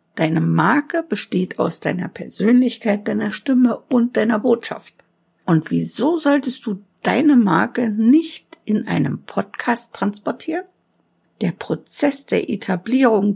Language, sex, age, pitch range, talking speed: German, female, 60-79, 195-250 Hz, 115 wpm